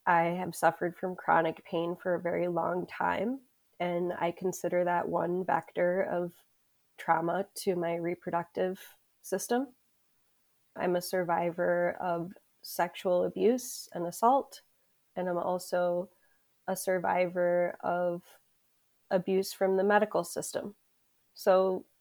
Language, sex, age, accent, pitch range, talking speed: English, female, 20-39, American, 175-195 Hz, 115 wpm